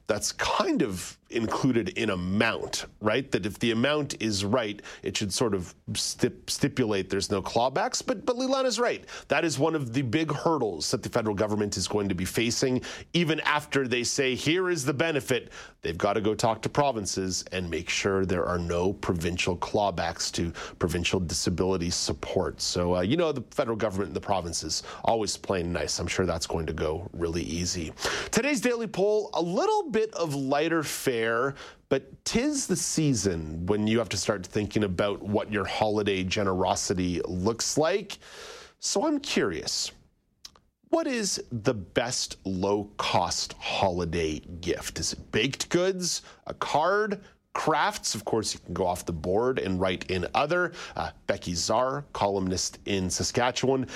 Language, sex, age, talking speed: English, male, 40-59, 170 wpm